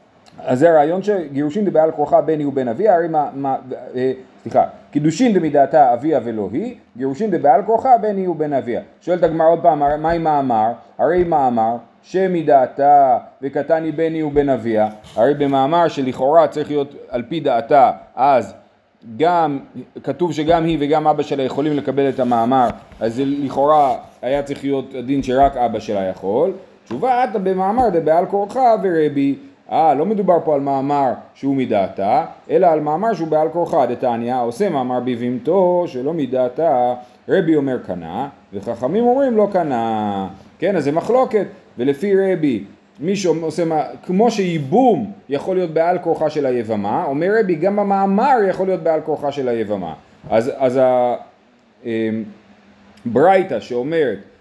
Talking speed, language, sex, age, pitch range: 135 wpm, Hebrew, male, 30-49, 130-180 Hz